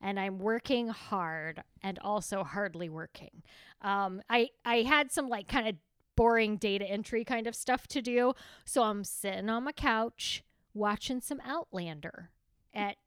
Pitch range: 195-275 Hz